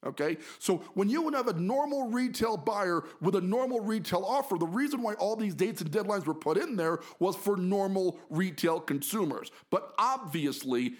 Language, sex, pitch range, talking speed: English, male, 165-215 Hz, 185 wpm